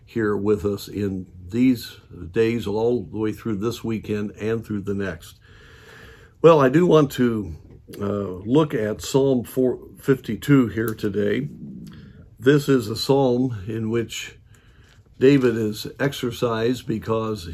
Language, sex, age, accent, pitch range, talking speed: English, male, 50-69, American, 105-120 Hz, 130 wpm